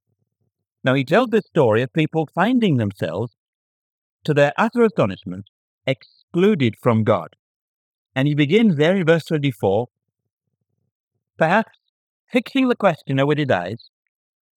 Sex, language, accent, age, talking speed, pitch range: male, English, British, 50-69, 125 wpm, 125-185 Hz